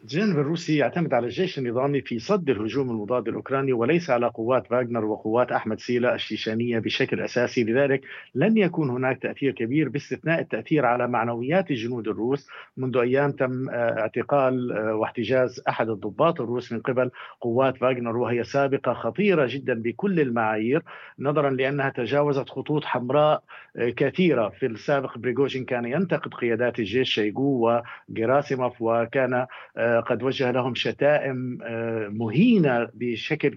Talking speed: 130 wpm